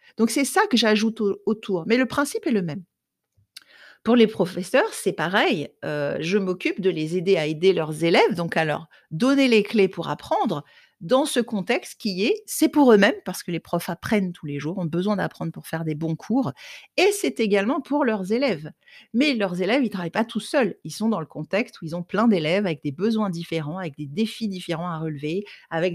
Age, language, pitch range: 50-69, French, 180-235 Hz